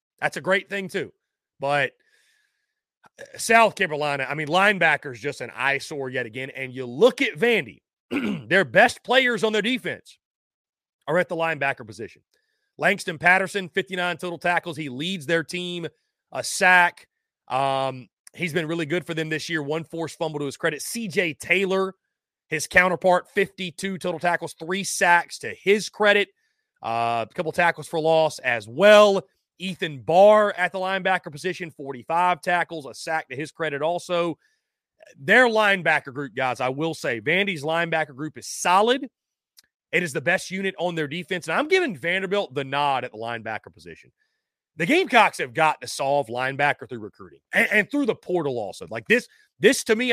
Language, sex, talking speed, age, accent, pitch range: English, male, 170 wpm, 30-49, American, 150-200 Hz